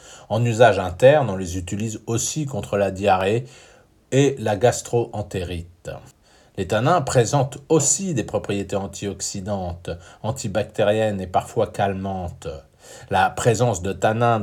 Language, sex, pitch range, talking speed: French, male, 95-125 Hz, 115 wpm